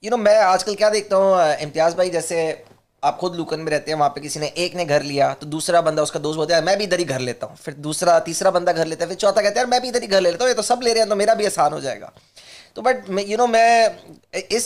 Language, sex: Hindi, male